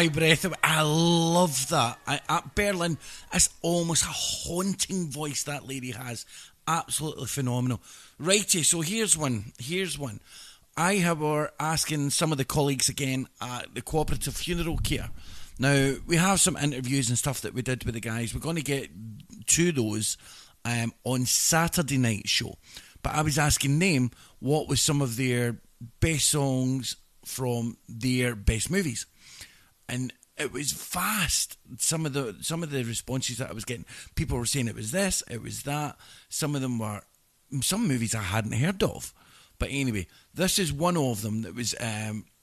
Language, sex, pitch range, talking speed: English, male, 115-155 Hz, 175 wpm